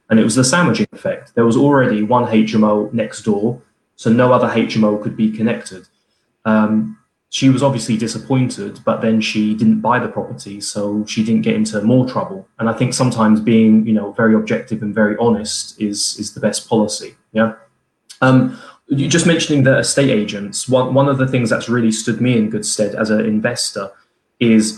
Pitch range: 105-120 Hz